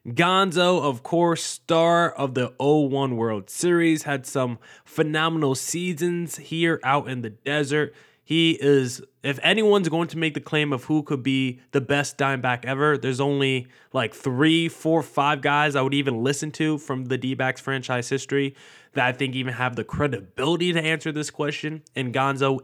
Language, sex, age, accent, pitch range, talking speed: English, male, 20-39, American, 125-155 Hz, 170 wpm